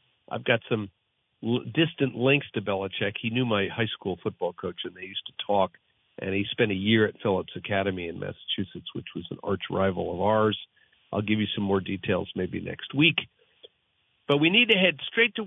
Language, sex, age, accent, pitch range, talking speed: English, male, 50-69, American, 105-140 Hz, 200 wpm